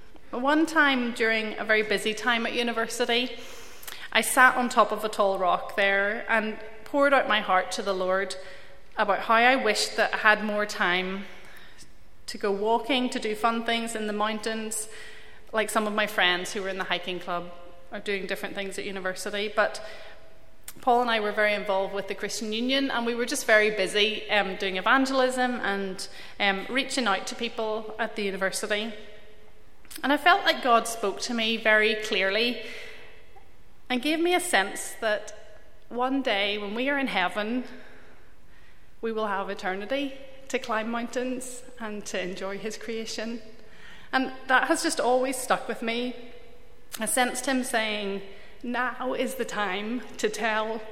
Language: English